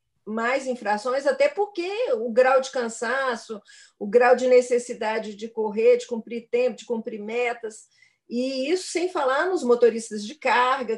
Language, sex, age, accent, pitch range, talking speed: Portuguese, female, 40-59, Brazilian, 235-330 Hz, 155 wpm